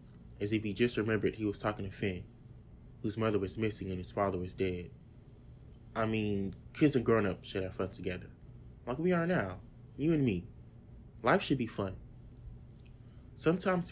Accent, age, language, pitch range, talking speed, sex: American, 20-39, English, 100-120 Hz, 175 wpm, male